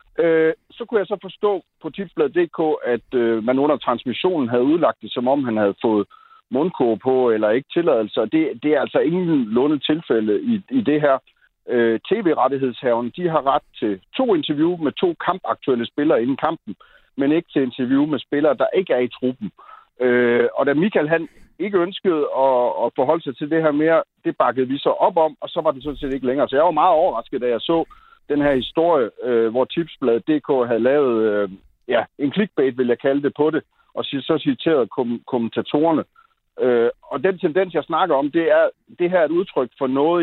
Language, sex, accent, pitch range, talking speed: Danish, male, native, 130-190 Hz, 205 wpm